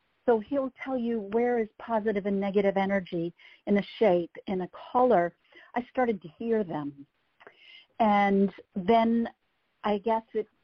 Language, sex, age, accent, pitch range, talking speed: English, female, 60-79, American, 195-245 Hz, 145 wpm